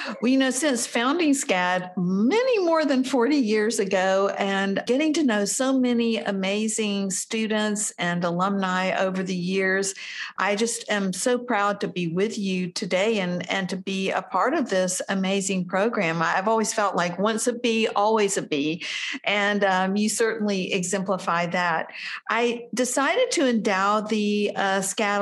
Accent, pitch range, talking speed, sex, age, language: American, 185-230 Hz, 160 wpm, female, 50-69, English